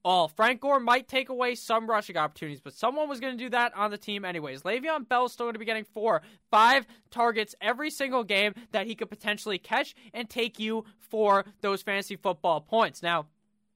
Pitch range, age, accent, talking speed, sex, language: 190-240 Hz, 20-39, American, 210 wpm, male, English